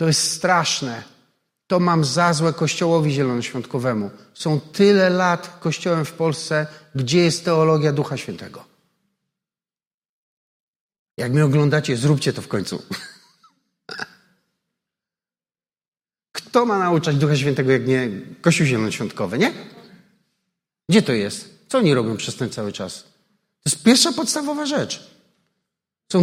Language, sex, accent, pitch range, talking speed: Polish, male, native, 140-180 Hz, 120 wpm